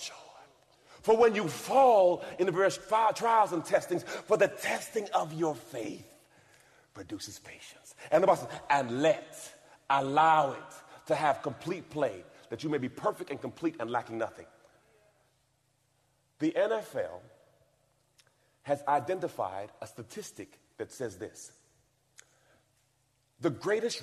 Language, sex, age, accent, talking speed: English, male, 40-59, American, 125 wpm